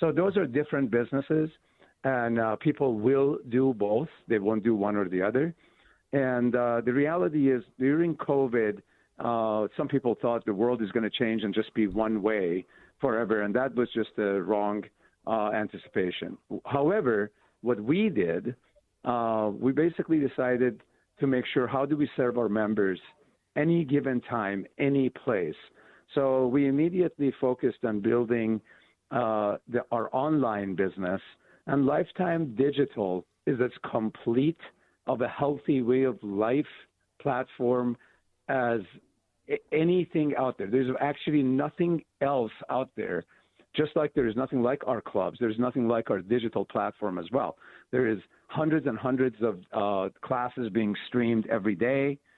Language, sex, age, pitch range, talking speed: English, male, 50-69, 110-140 Hz, 150 wpm